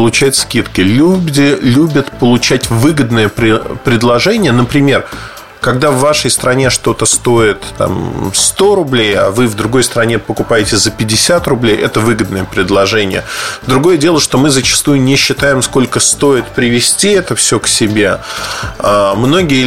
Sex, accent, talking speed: male, native, 125 wpm